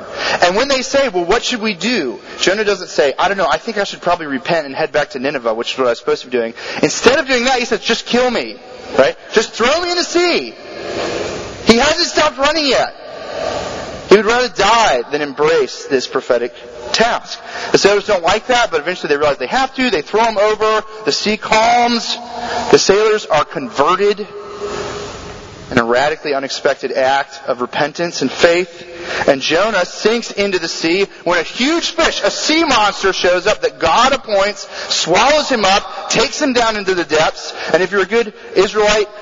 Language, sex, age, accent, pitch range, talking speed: English, male, 30-49, American, 180-255 Hz, 195 wpm